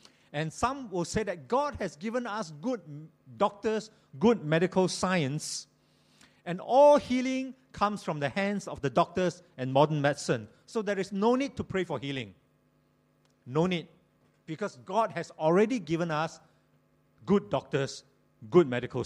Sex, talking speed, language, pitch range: male, 150 wpm, English, 145-220 Hz